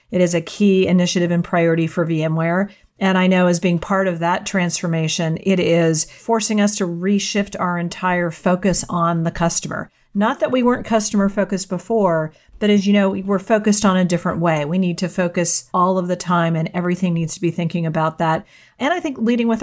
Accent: American